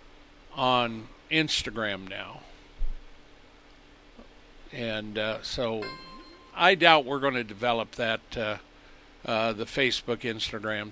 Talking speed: 100 wpm